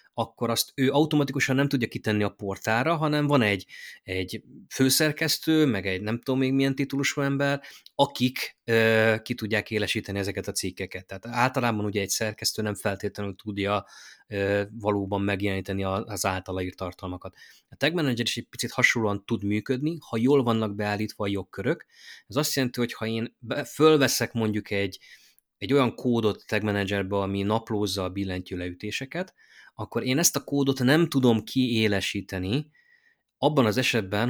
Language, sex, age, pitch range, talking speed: Hungarian, male, 20-39, 100-130 Hz, 150 wpm